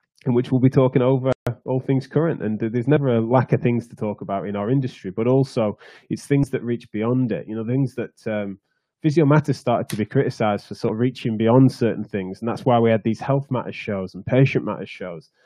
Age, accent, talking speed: 20-39, British, 235 wpm